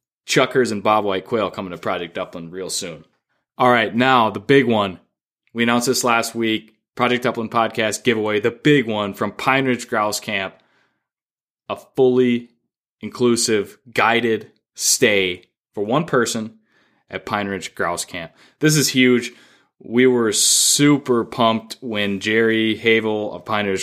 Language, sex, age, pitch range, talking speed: English, male, 20-39, 100-125 Hz, 150 wpm